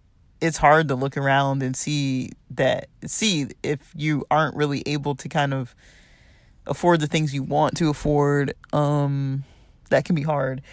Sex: male